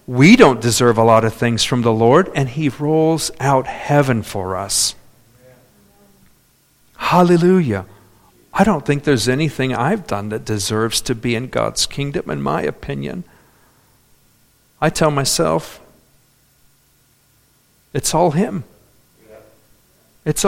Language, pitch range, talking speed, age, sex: English, 115-145 Hz, 125 wpm, 50-69, male